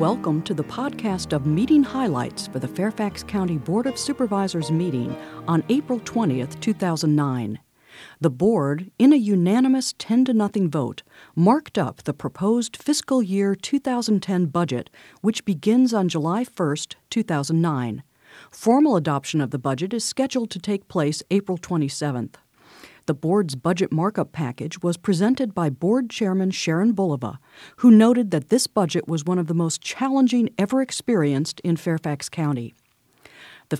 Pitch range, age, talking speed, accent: 155-225 Hz, 50-69, 145 wpm, American